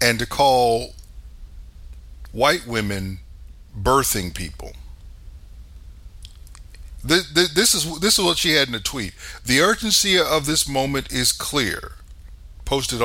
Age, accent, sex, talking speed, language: 50-69, American, male, 105 wpm, English